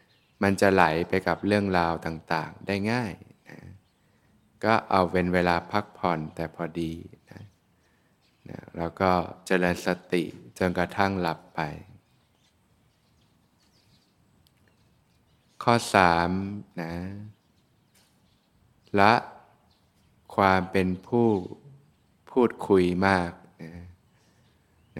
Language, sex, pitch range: Thai, male, 90-105 Hz